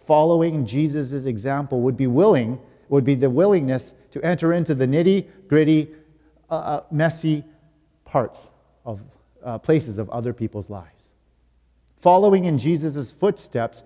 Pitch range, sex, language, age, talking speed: 115-150 Hz, male, English, 40-59, 130 wpm